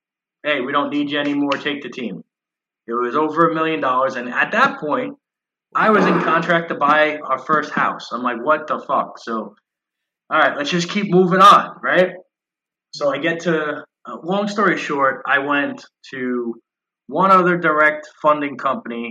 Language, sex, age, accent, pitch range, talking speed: English, male, 20-39, American, 120-160 Hz, 180 wpm